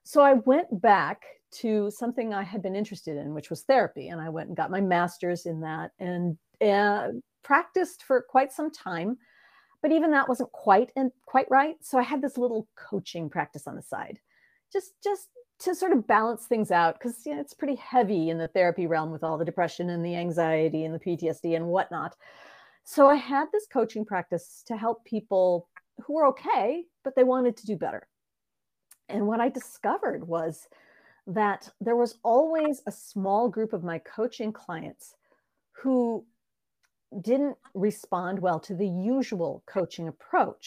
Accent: American